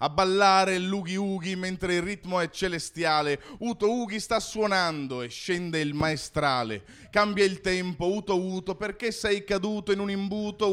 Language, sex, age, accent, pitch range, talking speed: Italian, male, 30-49, native, 170-210 Hz, 160 wpm